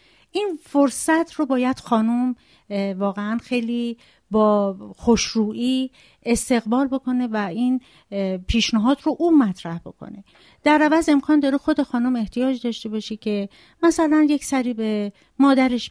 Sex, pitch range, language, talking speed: female, 195-250 Hz, Persian, 130 wpm